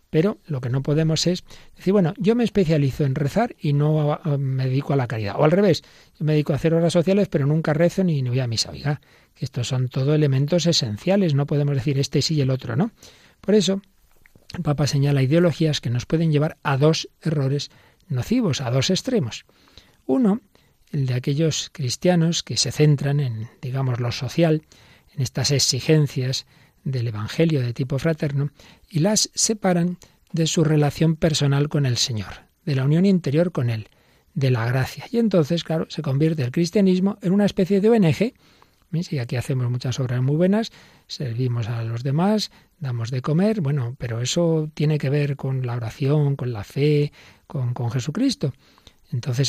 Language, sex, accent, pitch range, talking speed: Spanish, male, Spanish, 130-165 Hz, 185 wpm